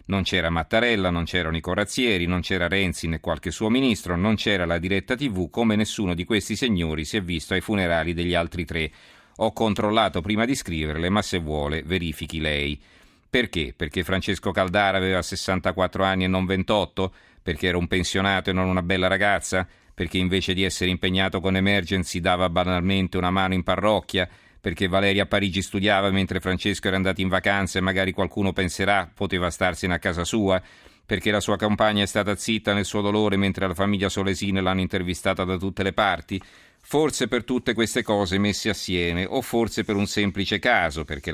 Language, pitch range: Italian, 90-100 Hz